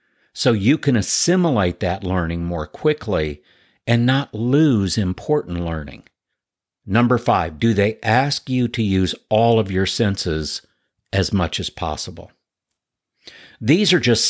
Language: English